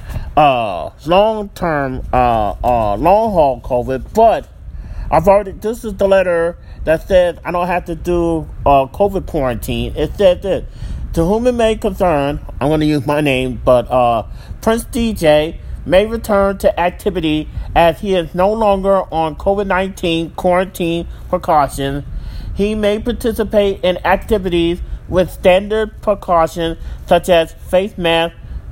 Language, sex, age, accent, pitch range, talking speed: English, male, 40-59, American, 140-205 Hz, 145 wpm